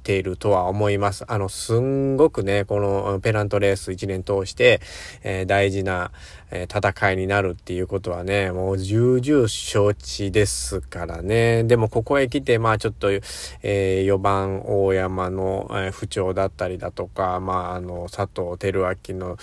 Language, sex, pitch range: Japanese, male, 95-110 Hz